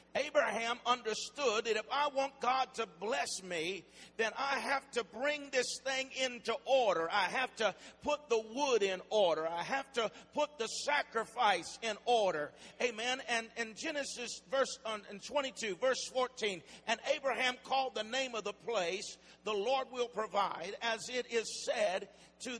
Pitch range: 210-265 Hz